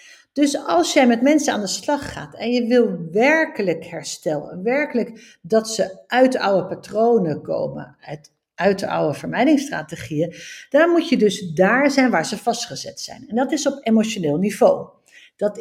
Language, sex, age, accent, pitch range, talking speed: Dutch, female, 60-79, Dutch, 195-280 Hz, 165 wpm